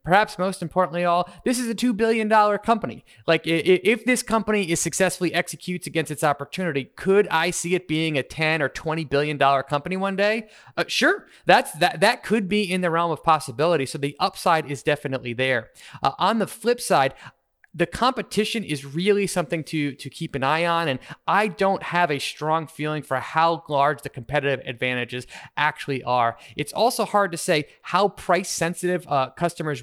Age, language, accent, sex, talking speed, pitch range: 30-49, English, American, male, 185 wpm, 140-185 Hz